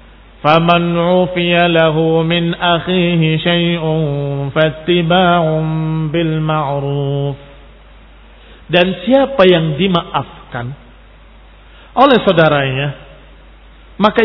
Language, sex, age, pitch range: Indonesian, male, 40-59, 170-230 Hz